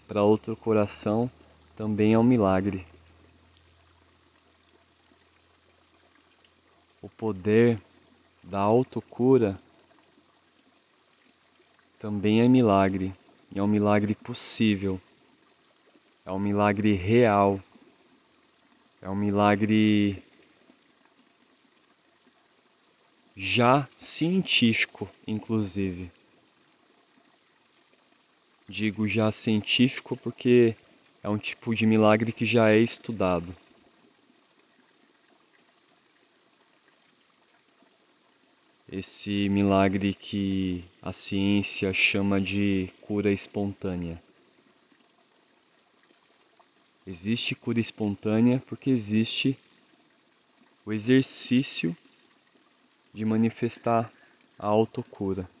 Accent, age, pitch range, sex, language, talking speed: Brazilian, 20-39, 95-115 Hz, male, Portuguese, 65 wpm